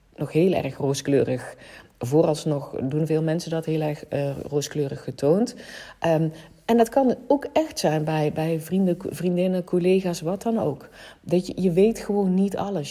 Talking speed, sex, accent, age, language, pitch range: 155 wpm, female, Dutch, 40-59, Dutch, 155-185 Hz